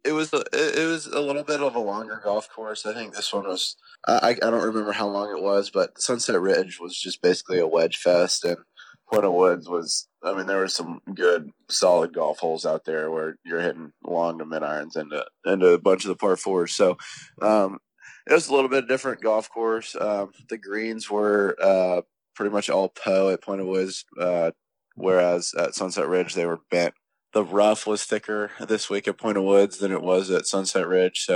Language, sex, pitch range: English, male, 90-105 Hz